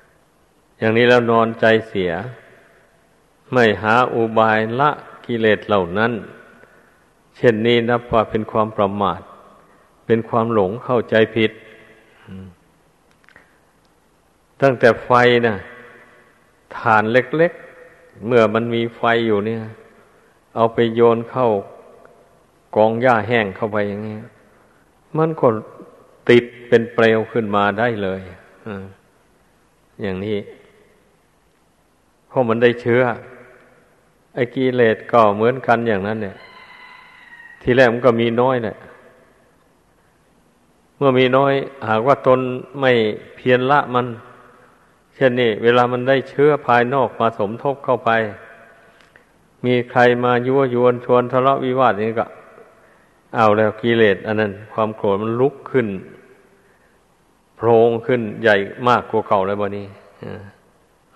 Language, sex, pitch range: Thai, male, 110-125 Hz